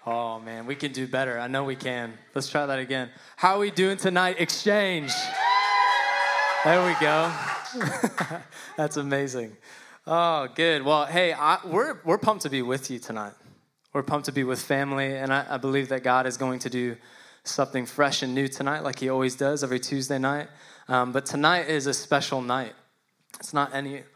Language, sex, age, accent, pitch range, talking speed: English, male, 10-29, American, 120-140 Hz, 190 wpm